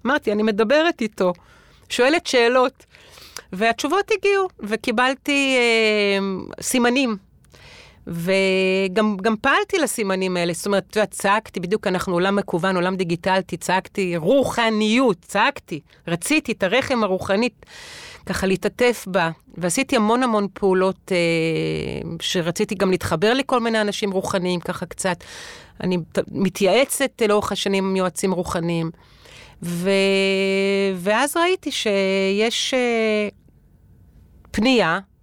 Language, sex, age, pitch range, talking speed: Hebrew, female, 40-59, 185-230 Hz, 105 wpm